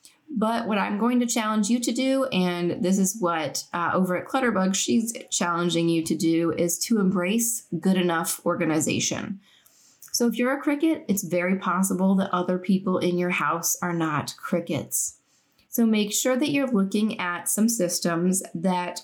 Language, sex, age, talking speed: English, female, 10-29, 175 wpm